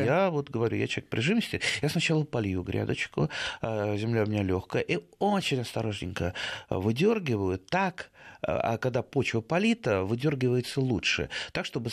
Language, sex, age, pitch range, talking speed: Russian, male, 30-49, 110-150 Hz, 135 wpm